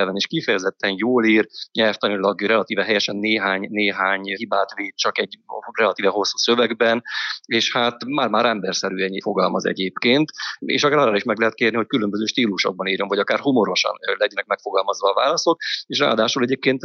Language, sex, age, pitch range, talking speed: Hungarian, male, 30-49, 105-125 Hz, 155 wpm